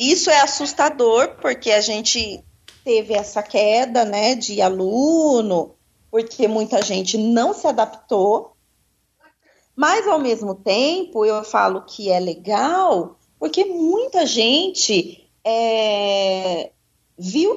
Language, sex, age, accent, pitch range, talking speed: Portuguese, female, 30-49, Brazilian, 210-295 Hz, 105 wpm